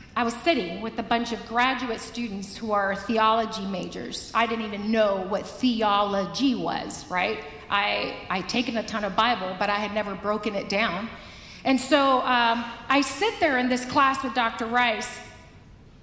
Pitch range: 235-325 Hz